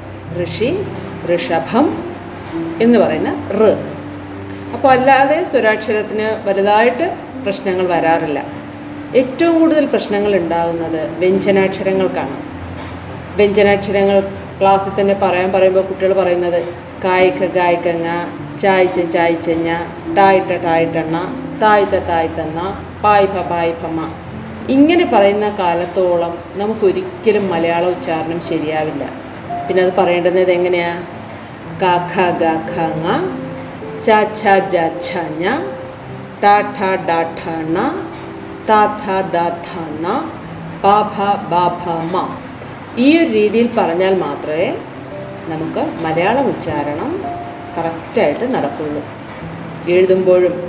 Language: Malayalam